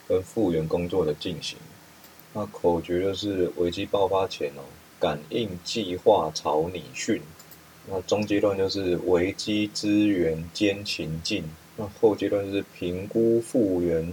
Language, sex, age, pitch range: Chinese, male, 30-49, 85-105 Hz